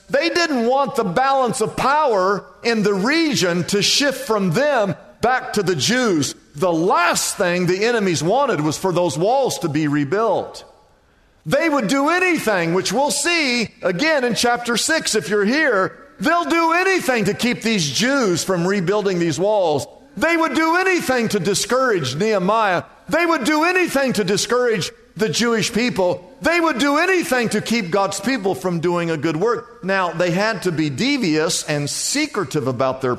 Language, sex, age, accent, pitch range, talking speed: English, male, 50-69, American, 165-250 Hz, 170 wpm